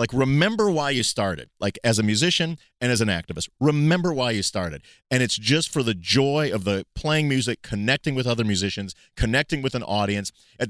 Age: 40-59